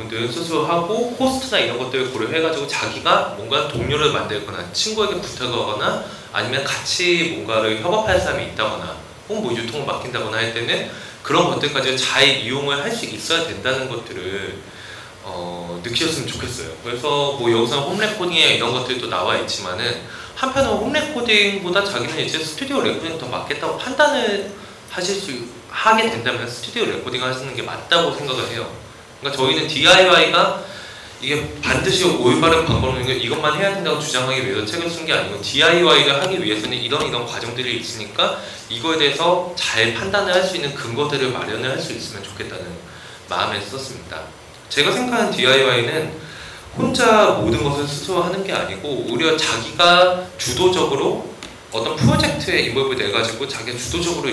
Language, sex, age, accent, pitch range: Korean, male, 20-39, native, 125-185 Hz